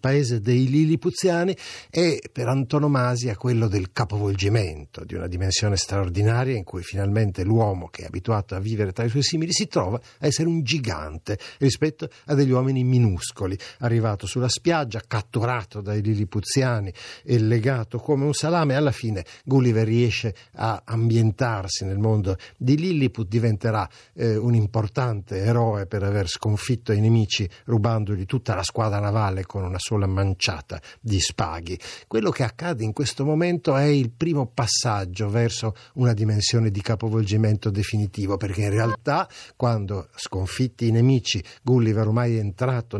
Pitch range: 105-130 Hz